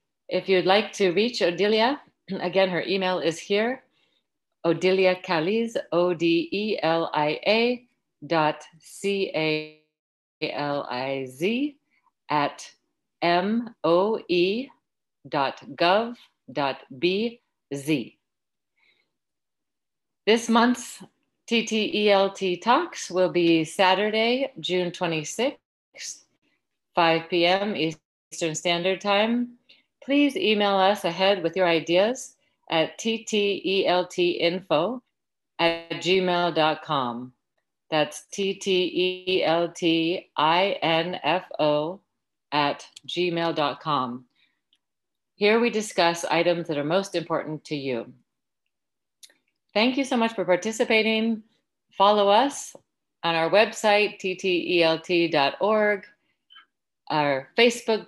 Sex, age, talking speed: female, 50-69, 90 wpm